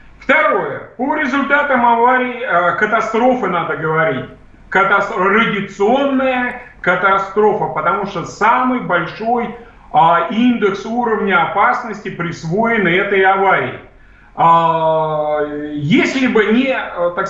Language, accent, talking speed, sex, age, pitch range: Russian, native, 95 wpm, male, 40-59, 185-260 Hz